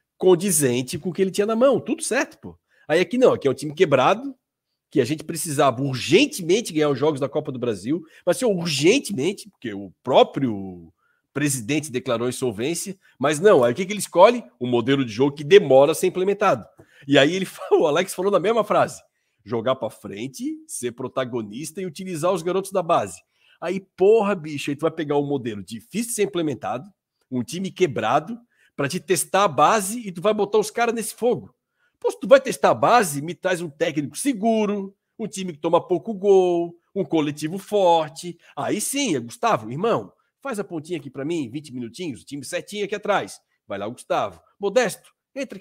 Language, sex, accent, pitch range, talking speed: Portuguese, male, Brazilian, 145-210 Hz, 200 wpm